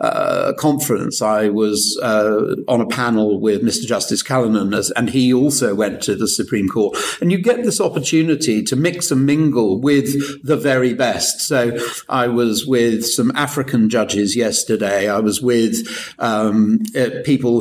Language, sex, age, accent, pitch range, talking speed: English, male, 50-69, British, 115-155 Hz, 160 wpm